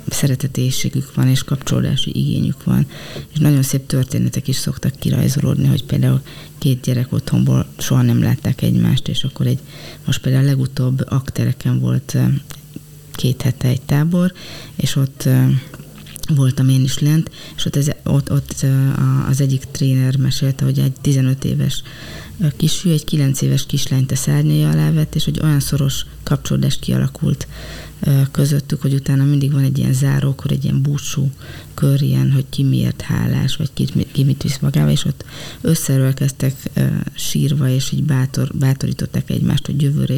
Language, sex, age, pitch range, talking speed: Hungarian, female, 30-49, 135-155 Hz, 150 wpm